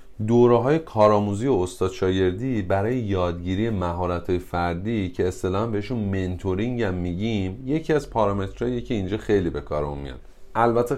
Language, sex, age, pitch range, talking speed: Persian, male, 30-49, 85-115 Hz, 140 wpm